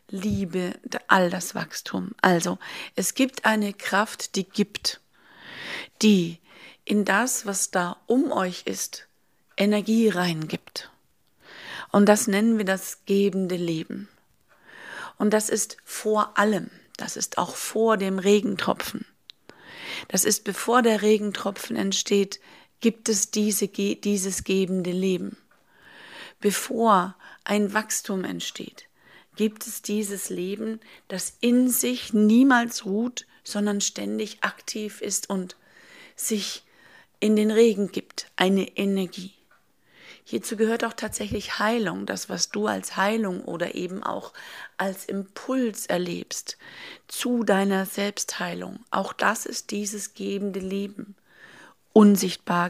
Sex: female